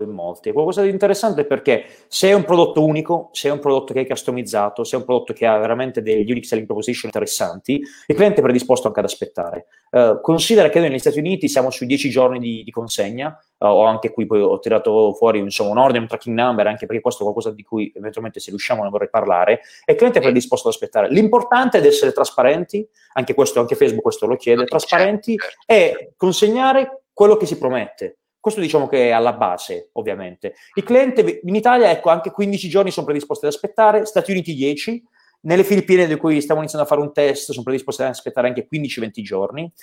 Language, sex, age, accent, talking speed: Italian, male, 30-49, native, 215 wpm